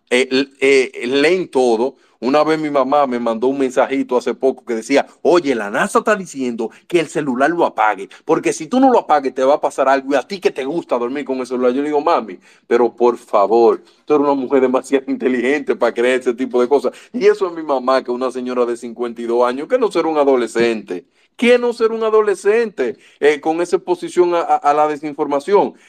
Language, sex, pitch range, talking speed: Spanish, male, 120-170 Hz, 225 wpm